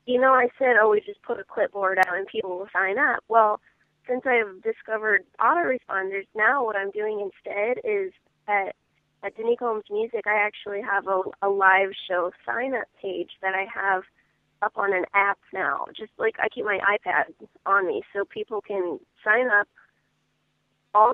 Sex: female